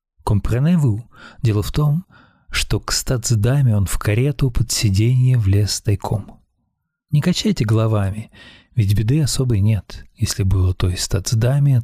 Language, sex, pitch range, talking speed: Russian, male, 105-125 Hz, 130 wpm